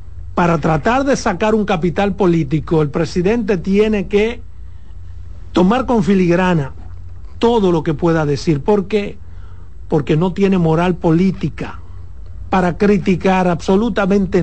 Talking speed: 120 wpm